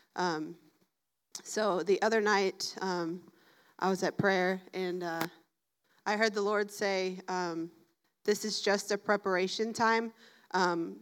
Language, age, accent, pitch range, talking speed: English, 20-39, American, 180-205 Hz, 135 wpm